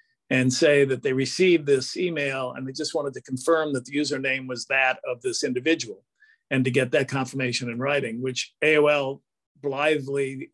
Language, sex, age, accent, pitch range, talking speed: English, male, 50-69, American, 125-150 Hz, 175 wpm